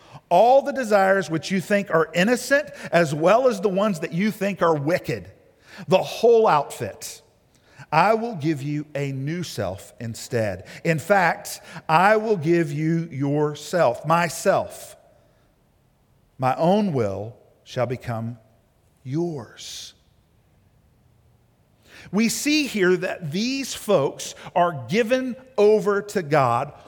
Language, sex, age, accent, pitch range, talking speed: English, male, 50-69, American, 145-215 Hz, 120 wpm